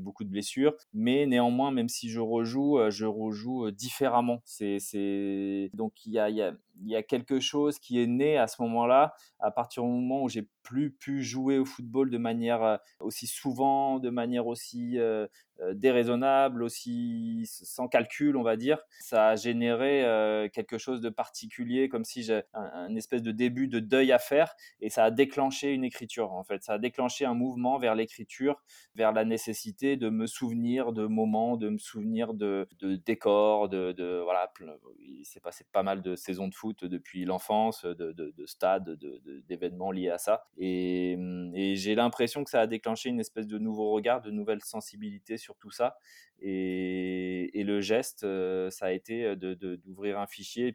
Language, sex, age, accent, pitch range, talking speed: French, male, 20-39, French, 100-125 Hz, 185 wpm